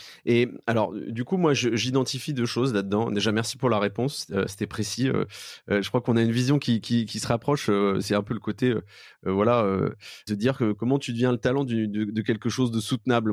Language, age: French, 20-39